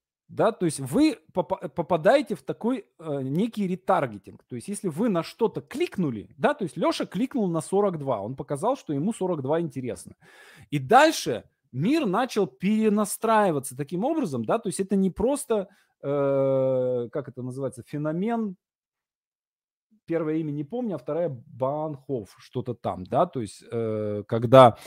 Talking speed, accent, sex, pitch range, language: 140 wpm, native, male, 130-200 Hz, Russian